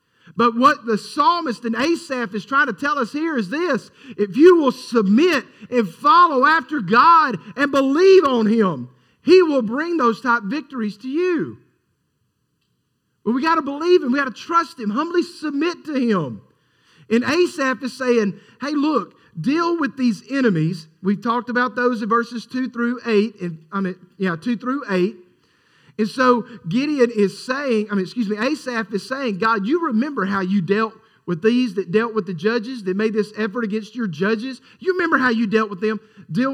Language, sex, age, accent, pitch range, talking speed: English, male, 40-59, American, 195-260 Hz, 190 wpm